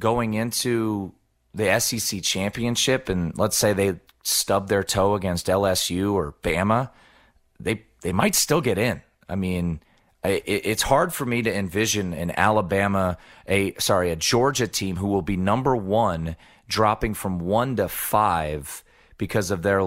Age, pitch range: 30-49, 90-110 Hz